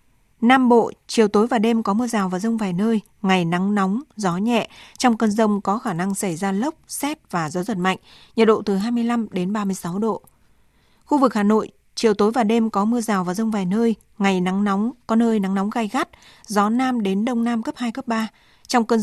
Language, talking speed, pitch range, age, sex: Vietnamese, 235 wpm, 195-235 Hz, 20-39, female